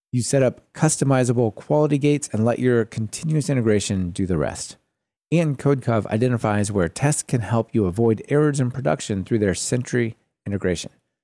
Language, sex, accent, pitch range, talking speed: English, male, American, 105-140 Hz, 160 wpm